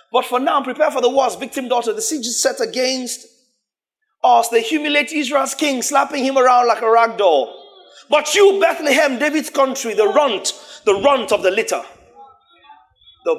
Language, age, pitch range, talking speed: English, 30-49, 235-345 Hz, 175 wpm